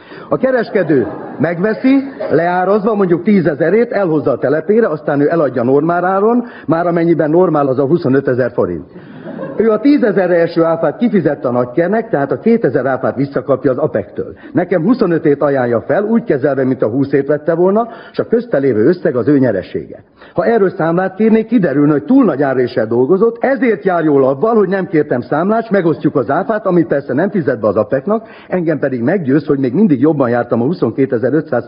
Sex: male